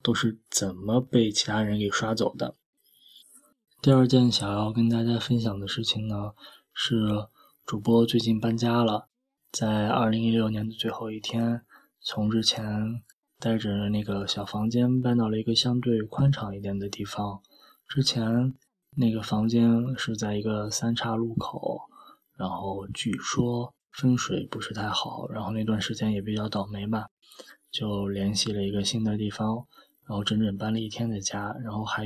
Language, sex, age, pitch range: Chinese, male, 20-39, 105-120 Hz